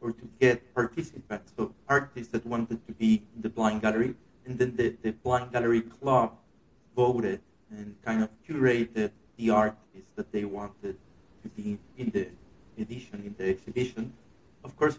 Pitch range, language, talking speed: 110-130 Hz, English, 165 wpm